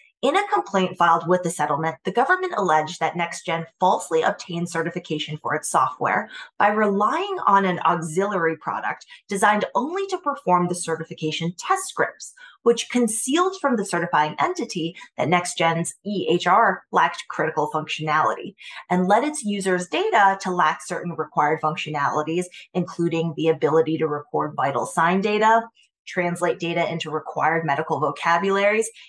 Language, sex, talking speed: English, female, 140 wpm